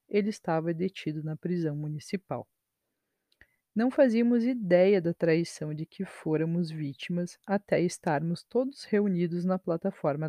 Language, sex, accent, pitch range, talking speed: Portuguese, female, Brazilian, 160-195 Hz, 120 wpm